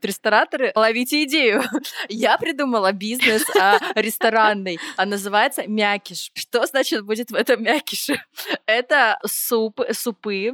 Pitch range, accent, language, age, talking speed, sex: 190-230 Hz, native, Russian, 20-39, 115 wpm, female